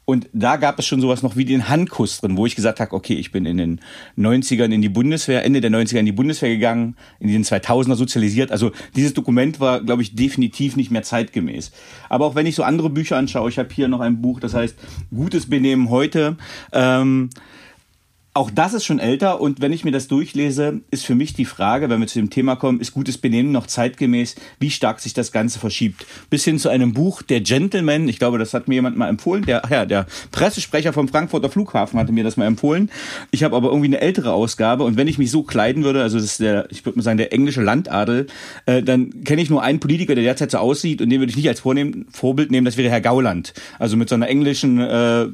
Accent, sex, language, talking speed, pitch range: German, male, German, 235 wpm, 115-140 Hz